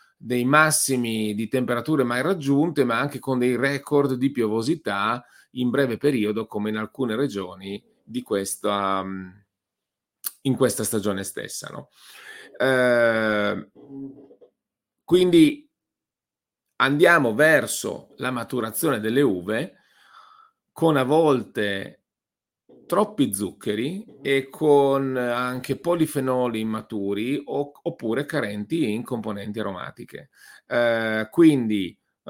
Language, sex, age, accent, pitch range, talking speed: Italian, male, 40-59, native, 110-145 Hz, 100 wpm